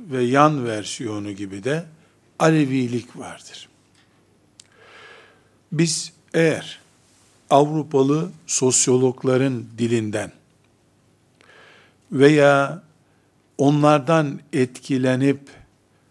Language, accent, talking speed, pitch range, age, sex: Turkish, native, 55 wpm, 130-155 Hz, 60-79, male